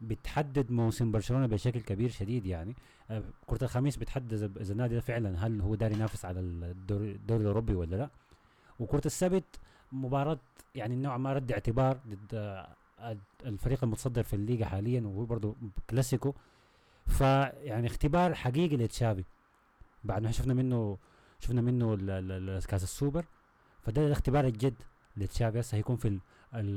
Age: 30-49